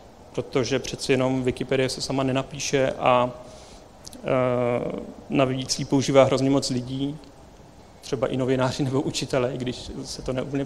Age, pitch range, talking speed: 40-59, 130-145 Hz, 140 wpm